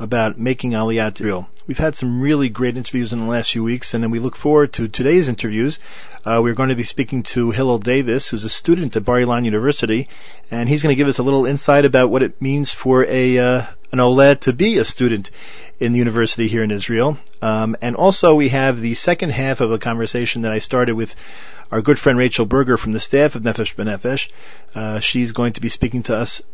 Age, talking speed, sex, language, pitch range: 40-59, 225 wpm, male, English, 115-140 Hz